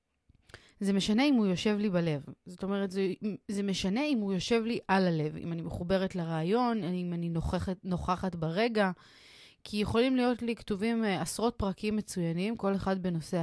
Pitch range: 175-220 Hz